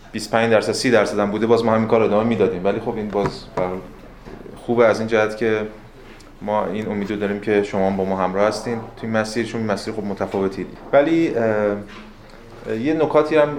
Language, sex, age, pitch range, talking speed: Persian, male, 20-39, 105-130 Hz, 185 wpm